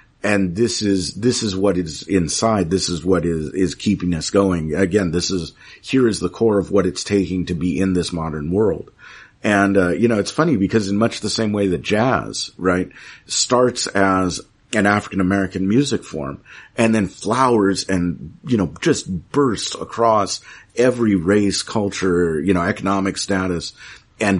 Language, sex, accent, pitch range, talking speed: English, male, American, 90-110 Hz, 175 wpm